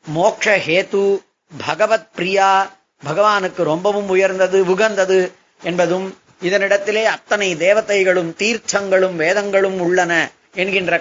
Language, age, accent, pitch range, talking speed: Tamil, 30-49, native, 160-195 Hz, 85 wpm